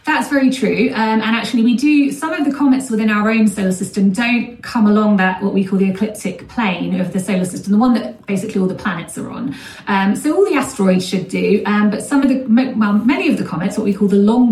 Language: English